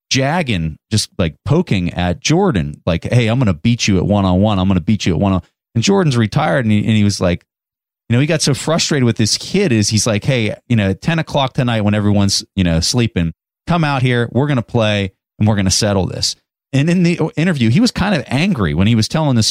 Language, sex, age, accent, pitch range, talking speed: English, male, 30-49, American, 100-140 Hz, 260 wpm